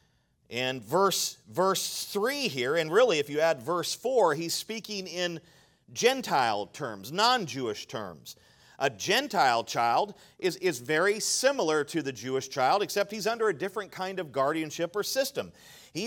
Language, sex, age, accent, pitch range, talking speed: English, male, 40-59, American, 155-210 Hz, 155 wpm